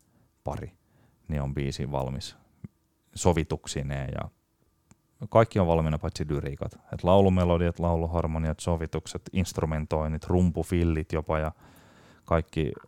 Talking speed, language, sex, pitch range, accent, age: 95 wpm, Finnish, male, 75-90 Hz, native, 30-49